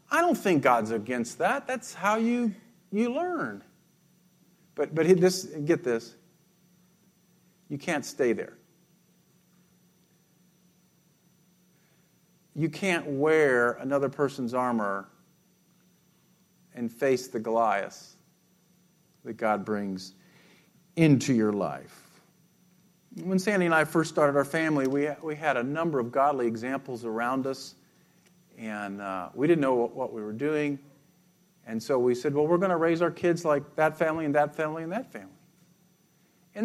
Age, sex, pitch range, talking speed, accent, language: 50-69, male, 150-190 Hz, 140 wpm, American, English